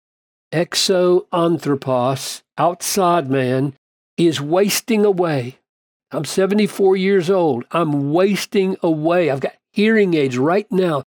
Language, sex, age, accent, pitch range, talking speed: English, male, 50-69, American, 140-180 Hz, 100 wpm